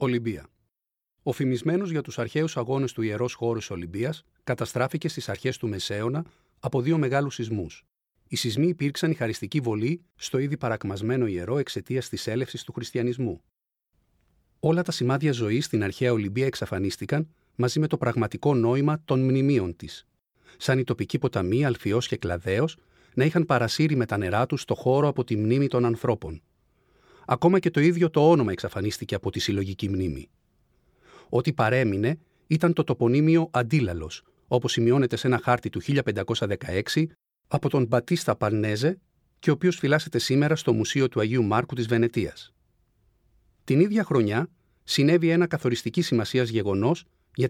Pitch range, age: 110-150 Hz, 40-59